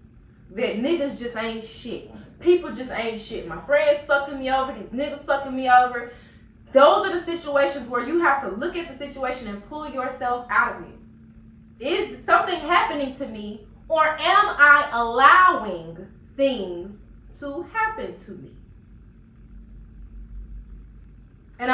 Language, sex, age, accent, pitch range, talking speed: English, female, 20-39, American, 240-295 Hz, 145 wpm